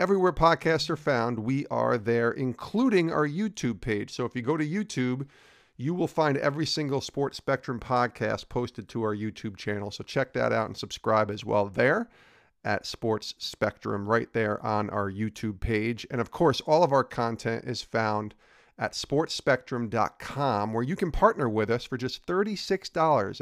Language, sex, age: English, male, 40-59